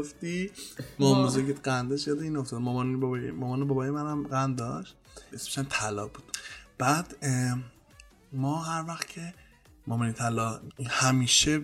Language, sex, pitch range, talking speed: English, male, 140-210 Hz, 125 wpm